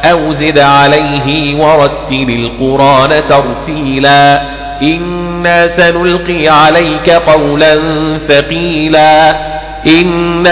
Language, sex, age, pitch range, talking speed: Arabic, male, 40-59, 145-155 Hz, 65 wpm